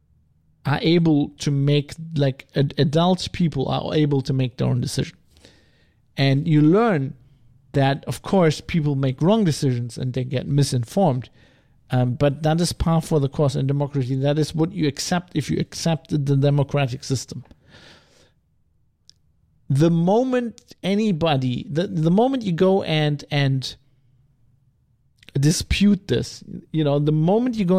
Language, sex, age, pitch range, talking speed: English, male, 50-69, 130-165 Hz, 145 wpm